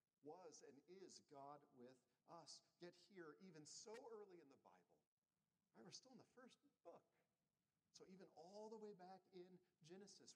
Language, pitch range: English, 135-180 Hz